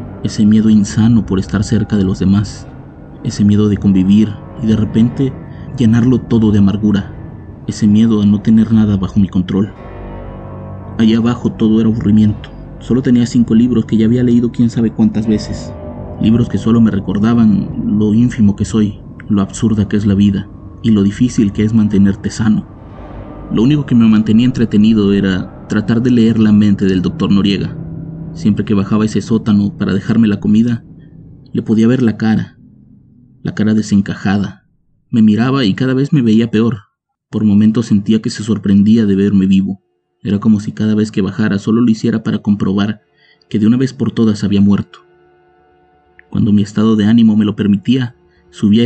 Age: 30-49